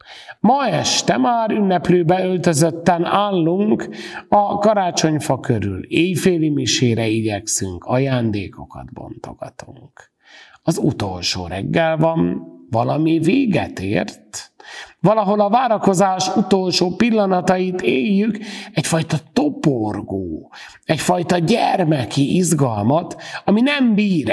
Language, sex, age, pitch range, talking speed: Hungarian, male, 50-69, 120-200 Hz, 85 wpm